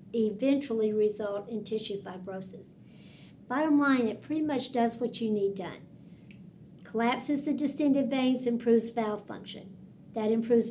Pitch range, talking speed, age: 205-245 Hz, 135 wpm, 50-69